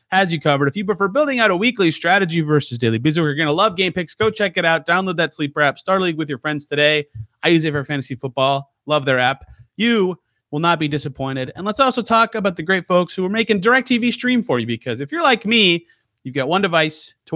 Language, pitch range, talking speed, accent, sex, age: English, 140-185 Hz, 255 wpm, American, male, 30-49